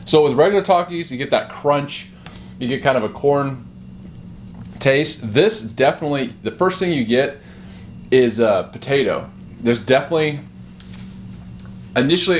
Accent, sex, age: American, male, 30-49